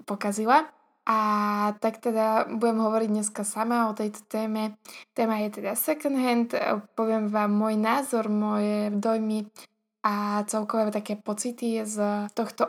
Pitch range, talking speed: 210-235 Hz, 130 wpm